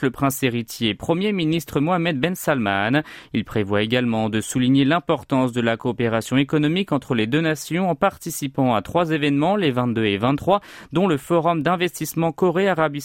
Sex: male